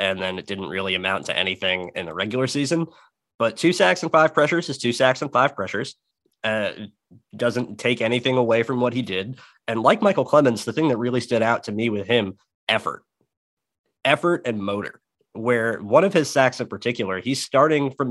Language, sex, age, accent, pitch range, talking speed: English, male, 30-49, American, 105-130 Hz, 200 wpm